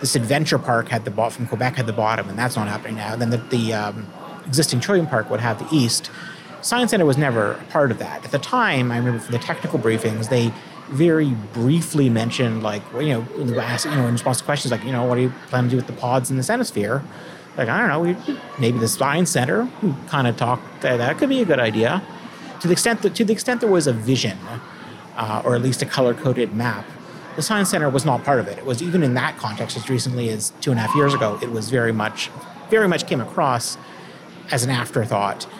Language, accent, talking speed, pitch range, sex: English, American, 250 wpm, 115-140 Hz, male